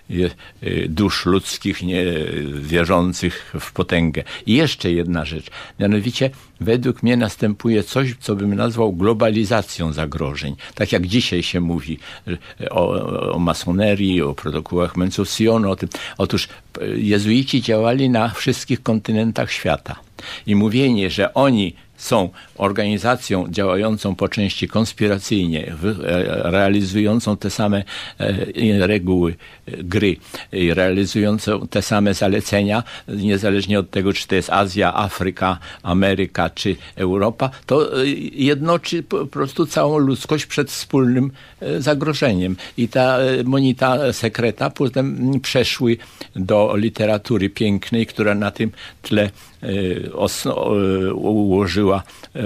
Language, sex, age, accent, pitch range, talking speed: Polish, male, 60-79, native, 95-115 Hz, 105 wpm